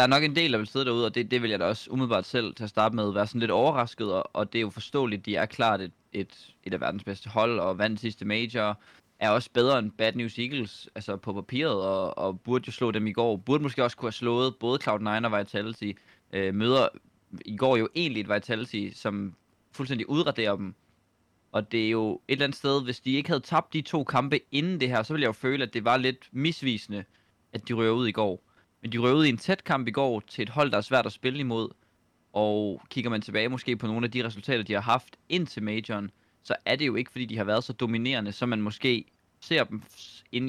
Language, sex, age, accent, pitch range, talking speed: Danish, male, 20-39, native, 105-125 Hz, 250 wpm